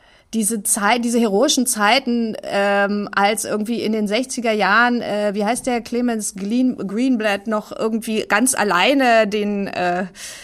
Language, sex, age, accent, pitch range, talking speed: German, female, 30-49, German, 200-245 Hz, 145 wpm